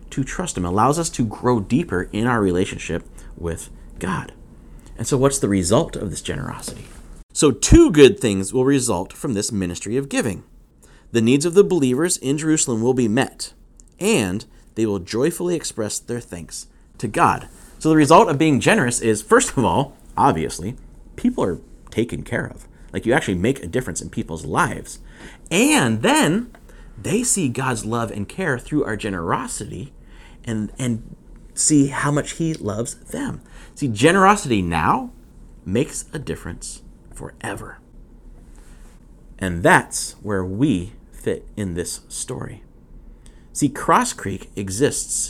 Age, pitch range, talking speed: 30-49, 95-140 Hz, 150 wpm